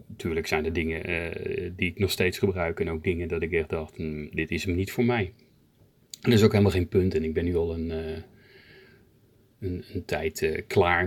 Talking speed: 220 wpm